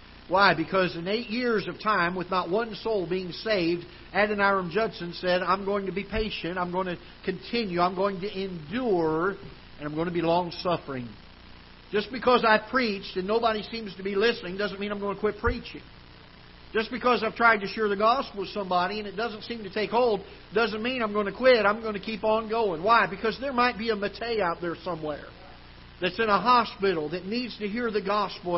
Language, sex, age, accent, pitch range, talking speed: English, male, 50-69, American, 180-220 Hz, 210 wpm